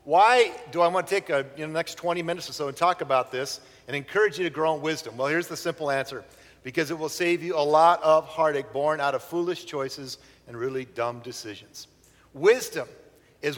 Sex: male